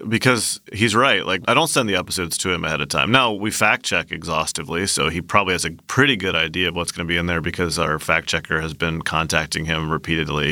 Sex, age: male, 30-49